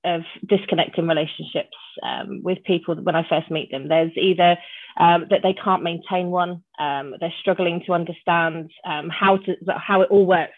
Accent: British